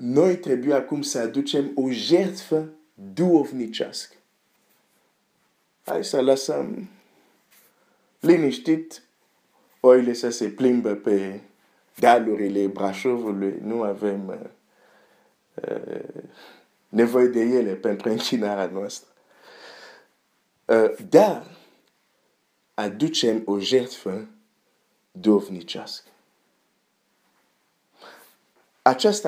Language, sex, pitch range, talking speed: Romanian, male, 110-145 Hz, 75 wpm